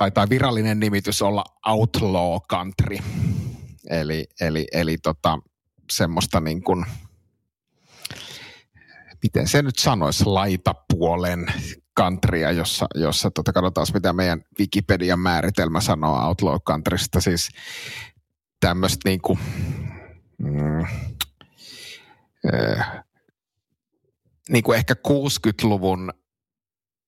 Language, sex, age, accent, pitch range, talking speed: Finnish, male, 30-49, native, 85-110 Hz, 90 wpm